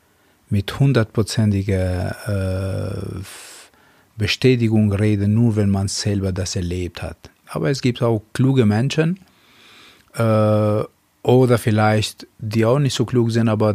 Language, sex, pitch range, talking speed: German, male, 100-110 Hz, 120 wpm